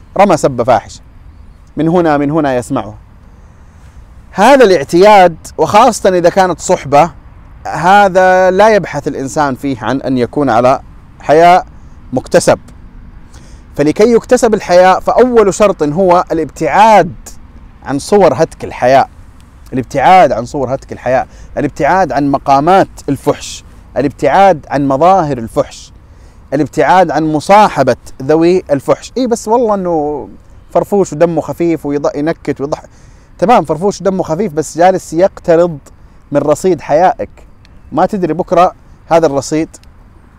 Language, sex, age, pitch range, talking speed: Arabic, male, 30-49, 105-175 Hz, 115 wpm